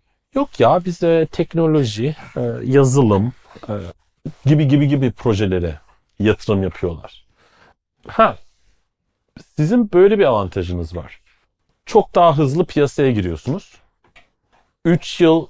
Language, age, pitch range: Turkish, 40-59, 105-140 Hz